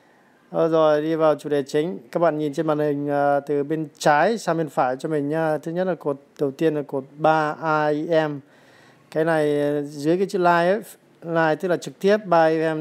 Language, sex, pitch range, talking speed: Vietnamese, male, 145-170 Hz, 225 wpm